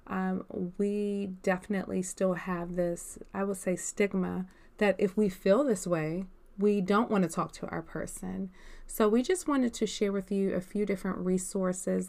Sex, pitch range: female, 180-200 Hz